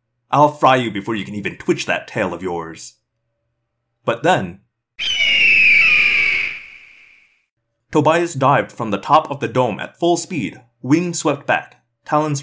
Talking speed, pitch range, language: 140 wpm, 115-150 Hz, English